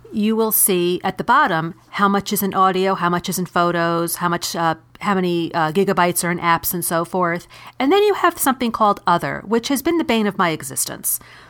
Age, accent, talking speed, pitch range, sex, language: 40-59, American, 230 wpm, 170-215 Hz, female, English